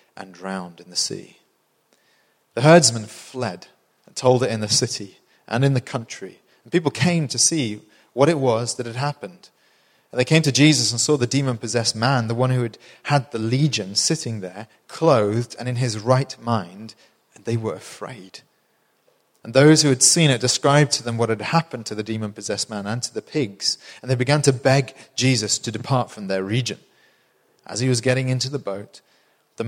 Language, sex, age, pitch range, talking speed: English, male, 30-49, 110-140 Hz, 200 wpm